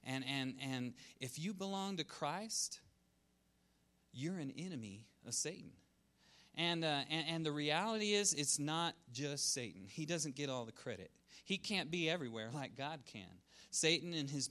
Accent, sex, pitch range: American, male, 120-165 Hz